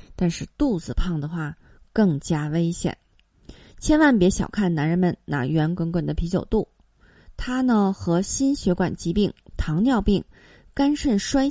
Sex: female